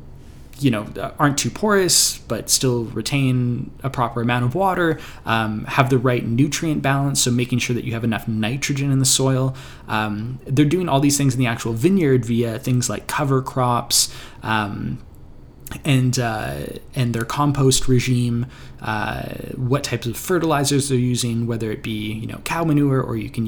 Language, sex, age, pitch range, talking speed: English, male, 20-39, 115-140 Hz, 175 wpm